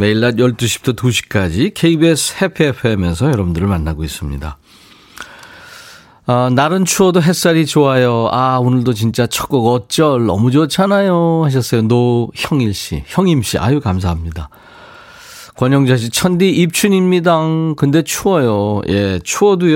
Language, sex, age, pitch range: Korean, male, 40-59, 105-155 Hz